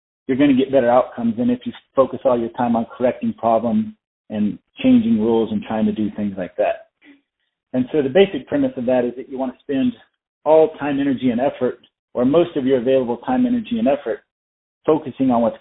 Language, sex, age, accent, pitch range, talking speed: English, male, 40-59, American, 125-160 Hz, 215 wpm